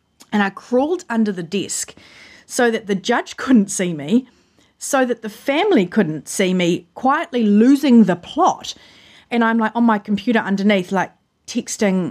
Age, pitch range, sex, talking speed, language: 30-49, 185-240 Hz, female, 165 wpm, English